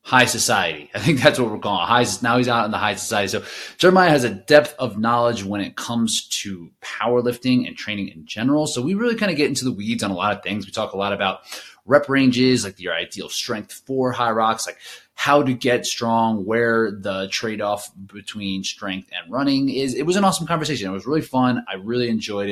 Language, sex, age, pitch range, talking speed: English, male, 20-39, 100-135 Hz, 225 wpm